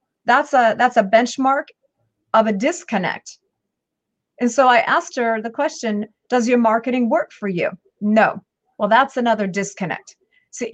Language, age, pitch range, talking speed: English, 40-59, 210-260 Hz, 150 wpm